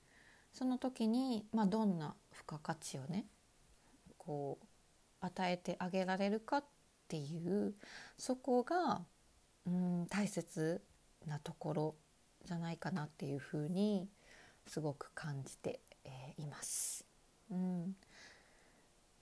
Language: Japanese